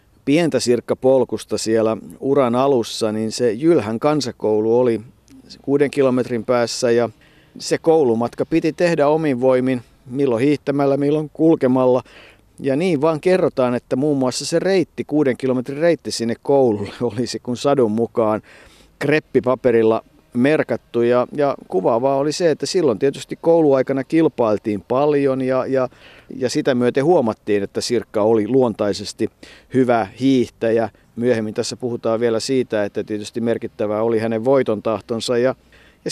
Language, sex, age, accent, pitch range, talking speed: Finnish, male, 50-69, native, 115-140 Hz, 135 wpm